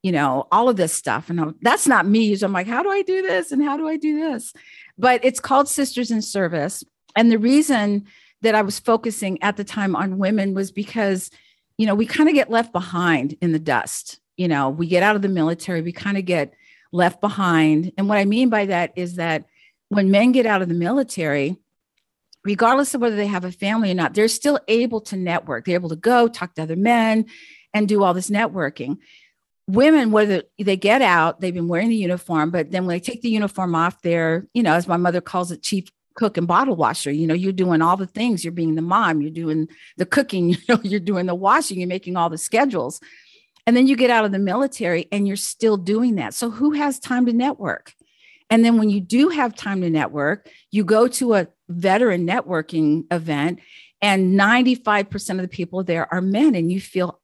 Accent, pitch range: American, 175-230 Hz